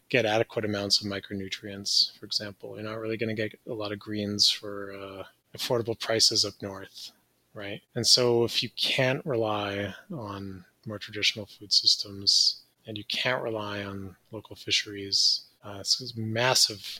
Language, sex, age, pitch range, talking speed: English, male, 20-39, 100-120 Hz, 160 wpm